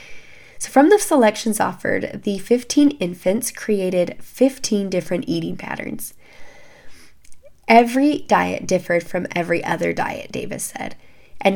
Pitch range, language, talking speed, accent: 185-230 Hz, English, 120 wpm, American